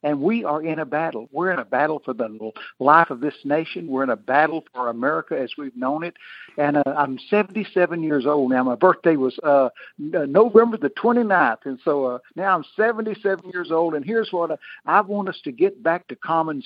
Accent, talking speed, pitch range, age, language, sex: American, 215 wpm, 135-180 Hz, 60-79, English, male